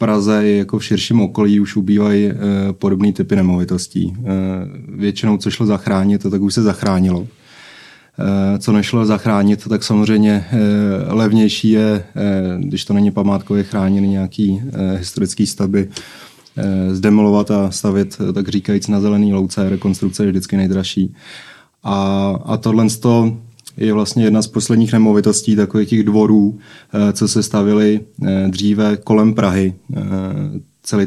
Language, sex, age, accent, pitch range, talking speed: Czech, male, 20-39, native, 100-105 Hz, 125 wpm